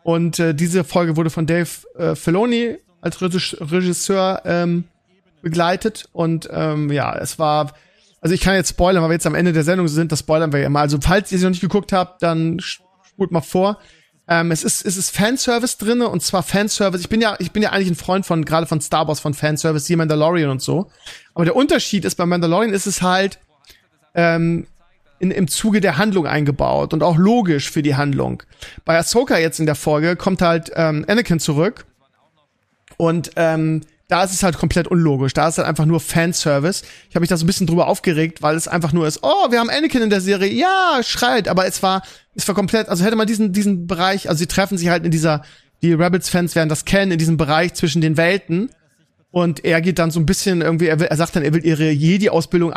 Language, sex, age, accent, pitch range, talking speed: German, male, 40-59, German, 160-190 Hz, 220 wpm